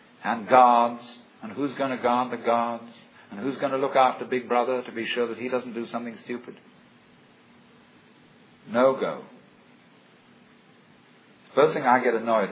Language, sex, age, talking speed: English, male, 50-69, 160 wpm